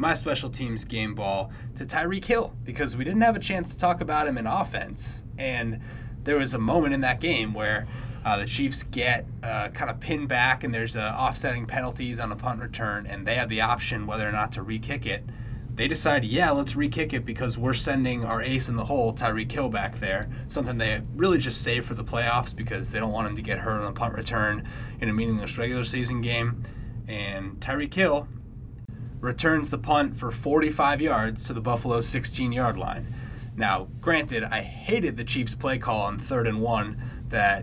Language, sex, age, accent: English, male, 20-39, American